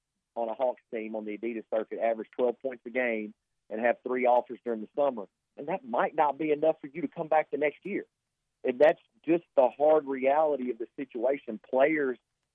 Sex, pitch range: male, 115-145 Hz